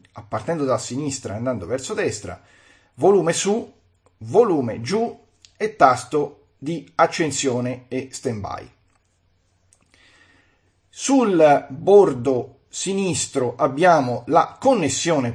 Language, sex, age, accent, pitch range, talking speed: Italian, male, 40-59, native, 120-180 Hz, 90 wpm